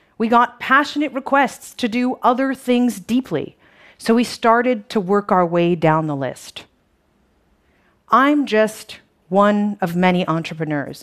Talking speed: 135 wpm